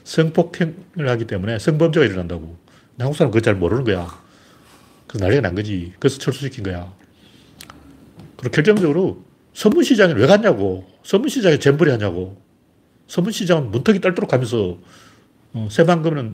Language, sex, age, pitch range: Korean, male, 40-59, 105-170 Hz